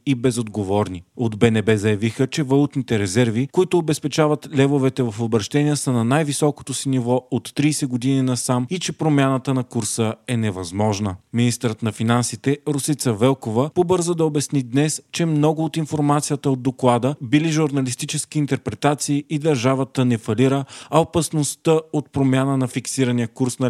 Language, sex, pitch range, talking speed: Bulgarian, male, 120-140 Hz, 150 wpm